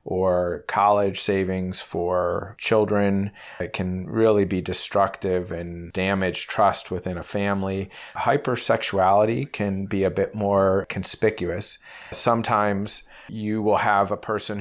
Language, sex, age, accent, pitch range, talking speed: English, male, 30-49, American, 95-105 Hz, 120 wpm